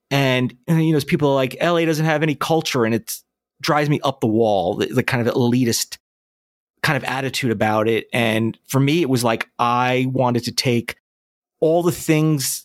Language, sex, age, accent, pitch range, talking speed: English, male, 30-49, American, 120-150 Hz, 200 wpm